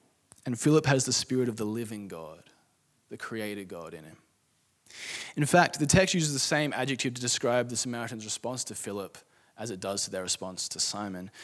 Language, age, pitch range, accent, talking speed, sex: English, 20-39, 100-130 Hz, Australian, 195 wpm, male